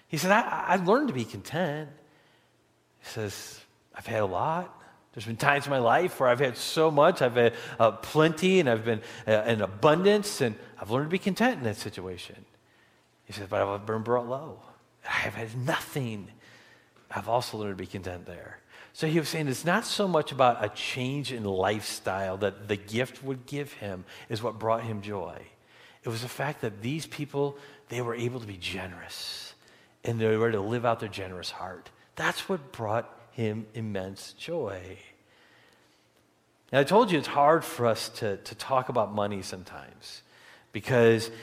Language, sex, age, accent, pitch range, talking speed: English, male, 40-59, American, 100-135 Hz, 185 wpm